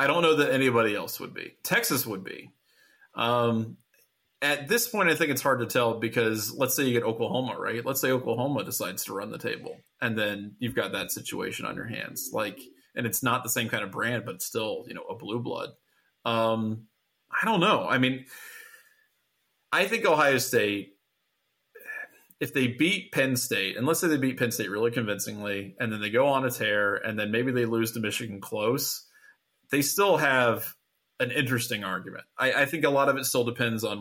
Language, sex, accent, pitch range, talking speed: English, male, American, 110-145 Hz, 205 wpm